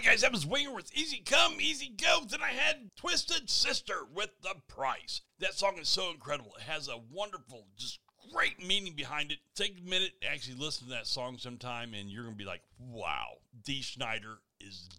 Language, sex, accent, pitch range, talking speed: English, male, American, 120-185 Hz, 205 wpm